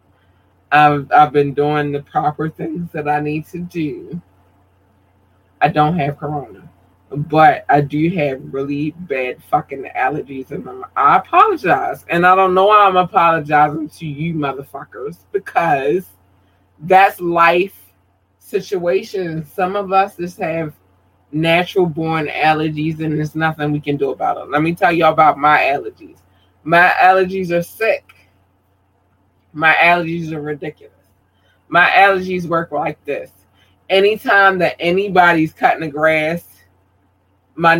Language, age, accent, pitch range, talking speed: English, 20-39, American, 135-180 Hz, 135 wpm